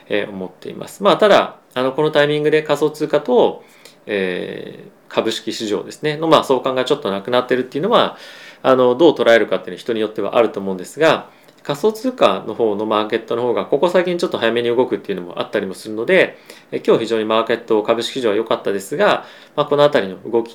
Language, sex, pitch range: Japanese, male, 110-150 Hz